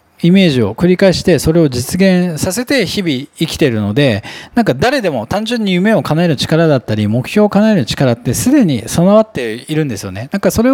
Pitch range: 120-200 Hz